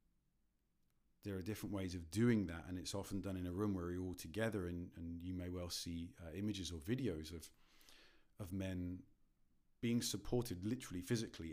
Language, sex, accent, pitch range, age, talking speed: English, male, British, 85-105 Hz, 40-59, 180 wpm